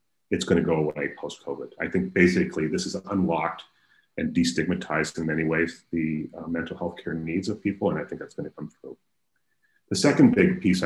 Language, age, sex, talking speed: English, 30-49, male, 210 wpm